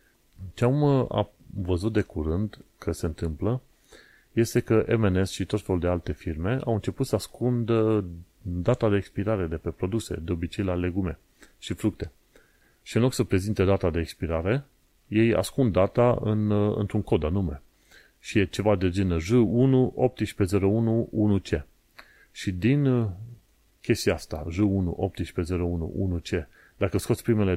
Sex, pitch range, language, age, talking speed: male, 90-110 Hz, Romanian, 30-49, 140 wpm